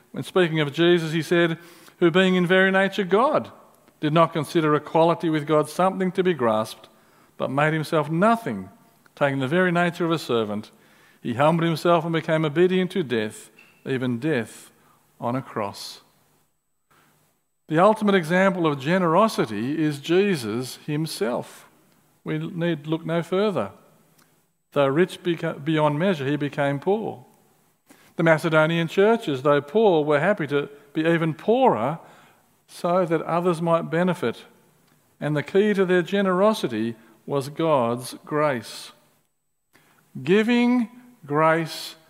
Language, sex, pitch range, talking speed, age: English, male, 145-185 Hz, 135 wpm, 50-69